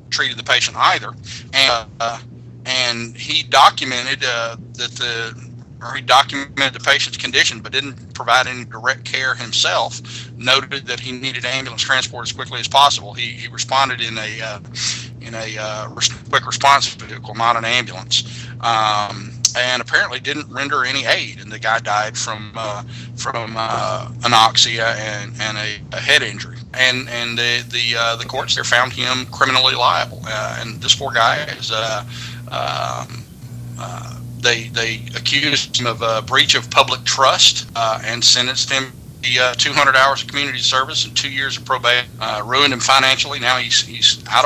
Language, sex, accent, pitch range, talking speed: English, male, American, 115-130 Hz, 175 wpm